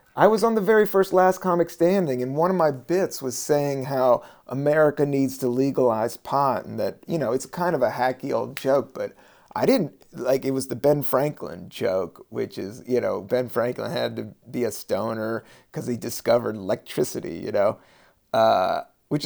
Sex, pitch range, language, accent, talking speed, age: male, 125-170 Hz, English, American, 195 wpm, 30-49